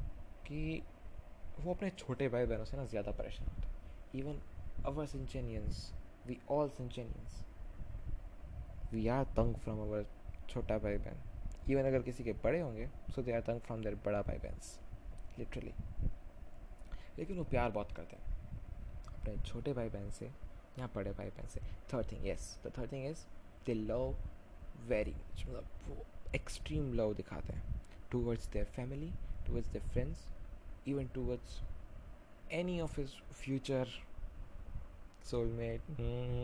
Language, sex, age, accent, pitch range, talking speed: Hindi, male, 20-39, native, 85-125 Hz, 140 wpm